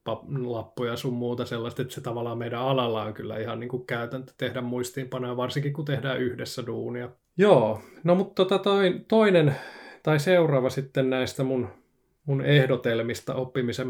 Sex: male